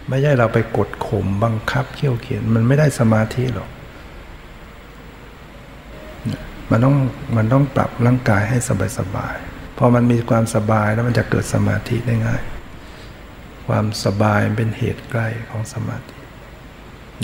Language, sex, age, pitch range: Thai, male, 60-79, 110-125 Hz